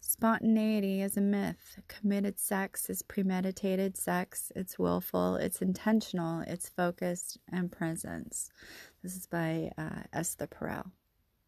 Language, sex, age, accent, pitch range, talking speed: English, female, 30-49, American, 175-205 Hz, 120 wpm